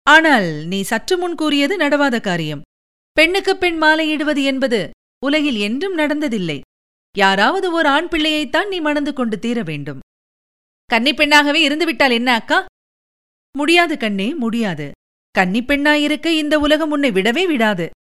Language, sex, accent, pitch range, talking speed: Tamil, female, native, 235-315 Hz, 120 wpm